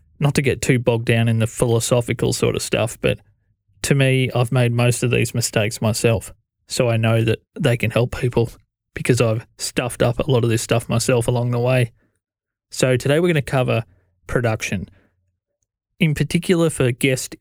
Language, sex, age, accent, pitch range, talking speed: English, male, 20-39, Australian, 115-135 Hz, 185 wpm